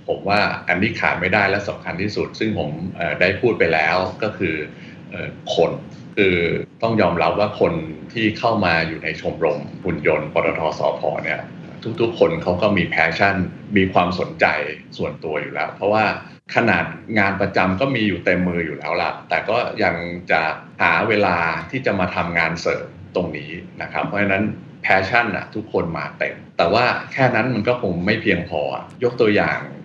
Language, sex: Thai, male